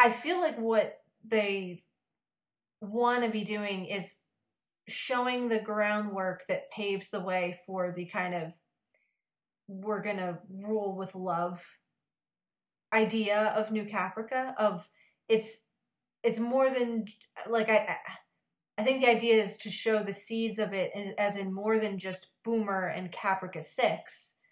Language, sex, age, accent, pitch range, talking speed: English, female, 30-49, American, 185-225 Hz, 140 wpm